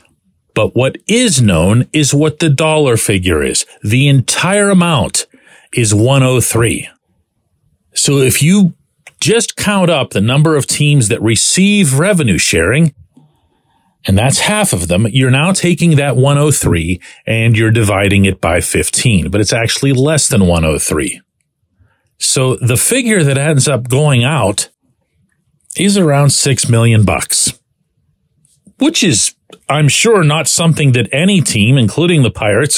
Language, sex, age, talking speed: English, male, 40-59, 135 wpm